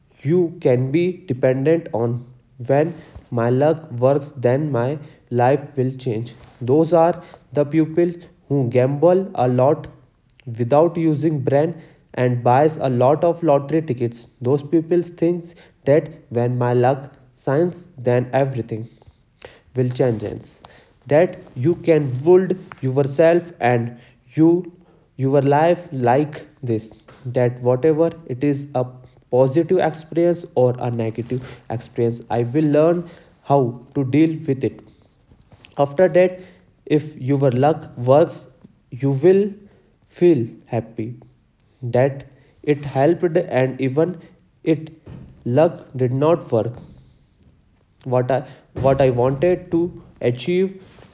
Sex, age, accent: male, 20-39, native